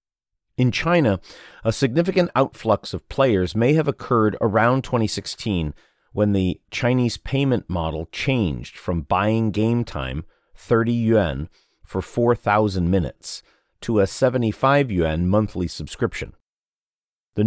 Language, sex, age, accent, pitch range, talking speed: English, male, 40-59, American, 90-115 Hz, 115 wpm